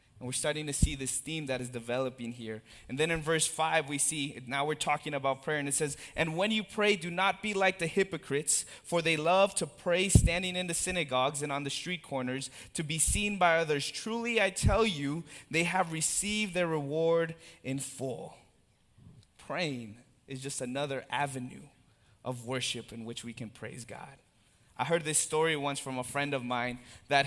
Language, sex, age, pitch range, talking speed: English, male, 20-39, 140-185 Hz, 200 wpm